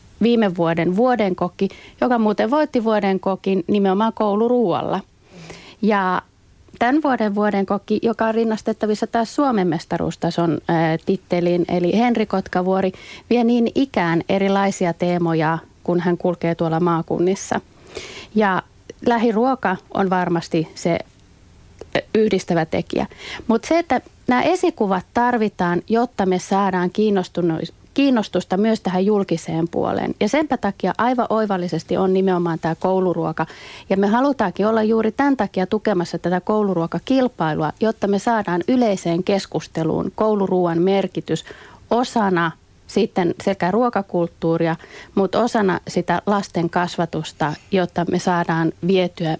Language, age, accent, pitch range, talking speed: Finnish, 30-49, native, 175-220 Hz, 120 wpm